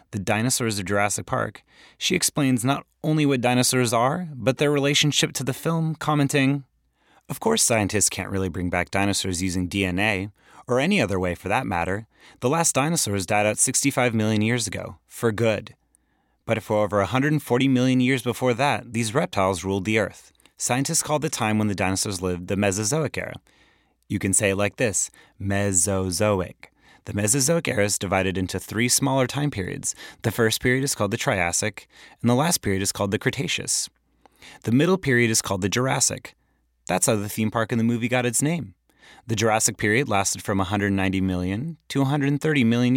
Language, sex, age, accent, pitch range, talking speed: English, male, 30-49, American, 100-130 Hz, 185 wpm